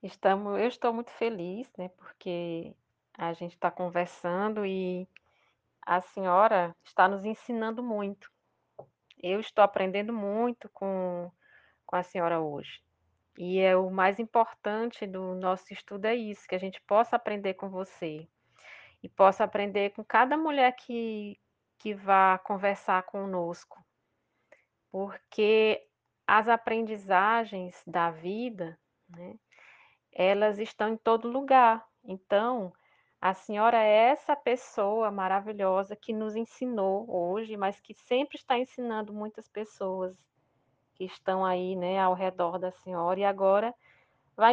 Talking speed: 130 wpm